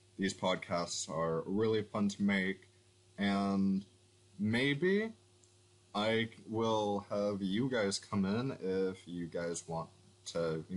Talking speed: 125 wpm